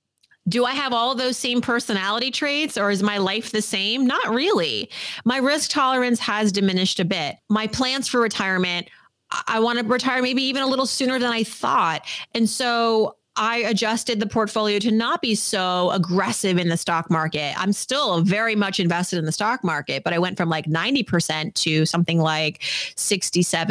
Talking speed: 185 wpm